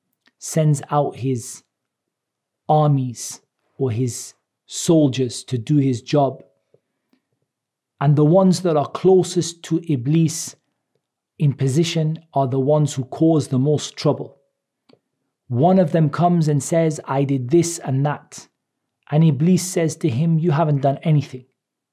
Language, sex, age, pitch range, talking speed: English, male, 40-59, 140-170 Hz, 135 wpm